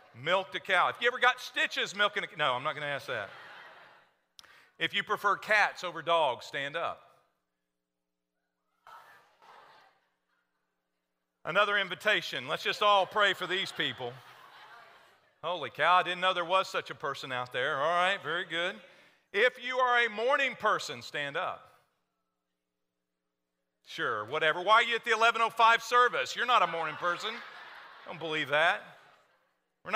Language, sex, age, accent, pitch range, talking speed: English, male, 40-59, American, 145-230 Hz, 150 wpm